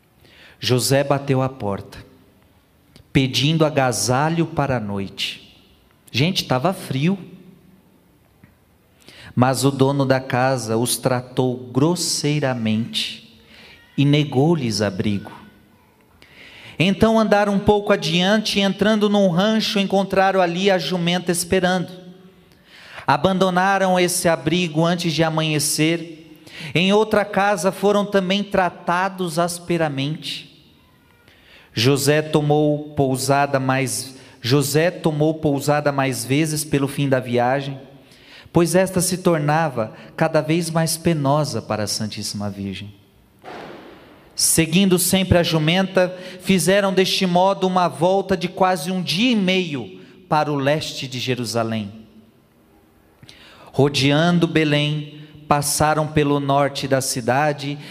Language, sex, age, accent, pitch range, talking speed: Portuguese, male, 40-59, Brazilian, 130-180 Hz, 105 wpm